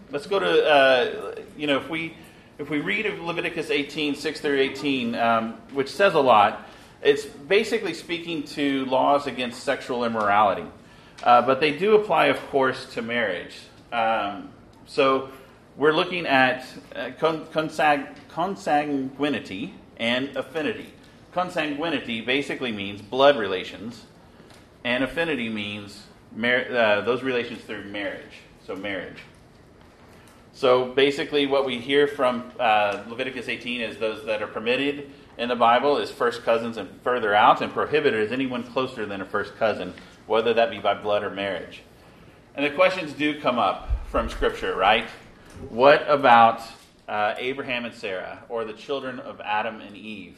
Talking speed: 150 wpm